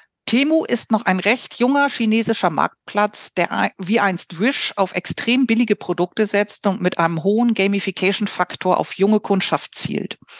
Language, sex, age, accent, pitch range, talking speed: German, female, 50-69, German, 175-225 Hz, 150 wpm